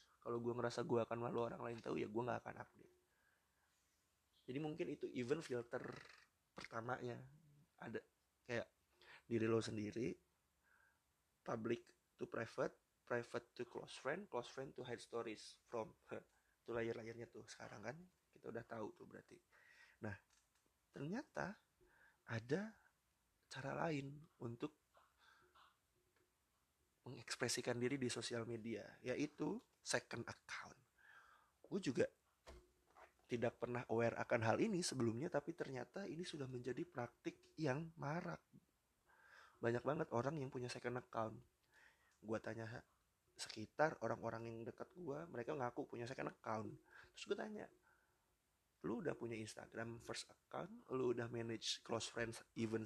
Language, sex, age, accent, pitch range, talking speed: English, male, 20-39, Indonesian, 115-140 Hz, 130 wpm